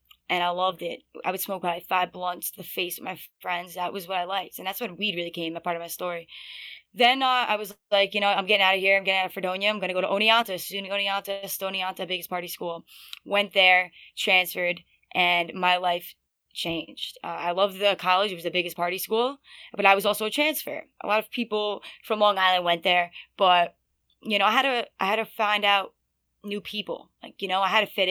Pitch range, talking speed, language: 180-205 Hz, 240 wpm, English